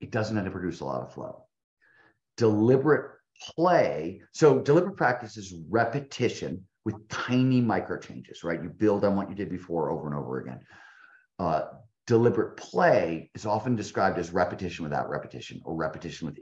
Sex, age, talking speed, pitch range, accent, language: male, 40-59, 165 wpm, 85-110 Hz, American, English